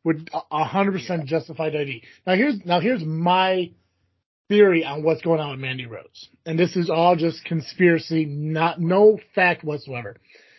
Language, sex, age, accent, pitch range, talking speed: English, male, 30-49, American, 140-175 Hz, 155 wpm